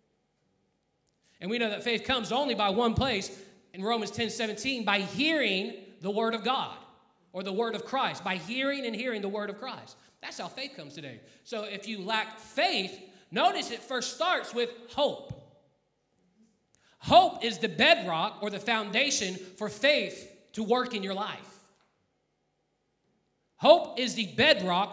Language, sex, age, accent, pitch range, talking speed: English, male, 30-49, American, 205-265 Hz, 160 wpm